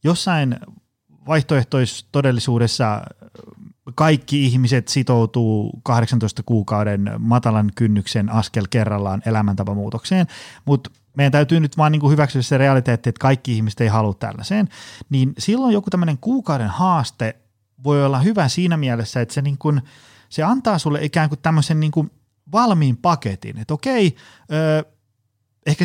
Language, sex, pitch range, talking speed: Finnish, male, 115-160 Hz, 125 wpm